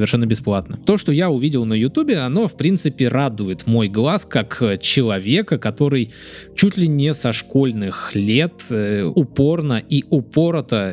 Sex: male